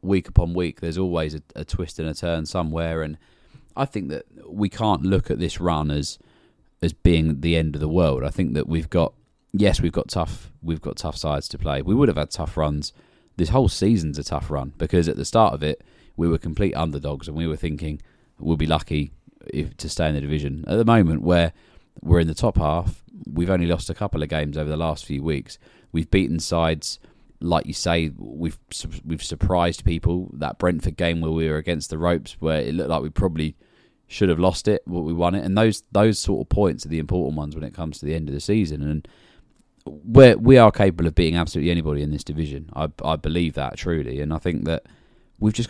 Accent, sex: British, male